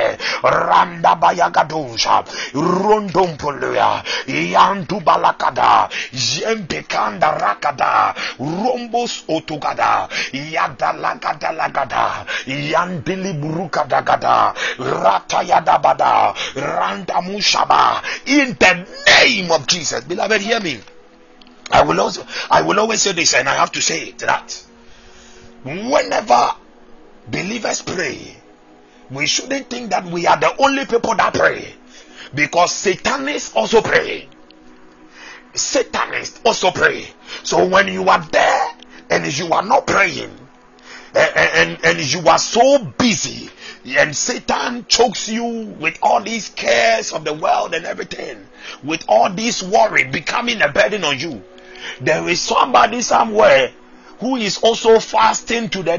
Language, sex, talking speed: English, male, 120 wpm